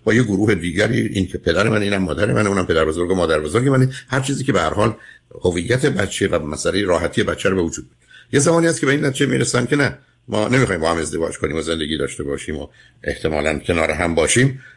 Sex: male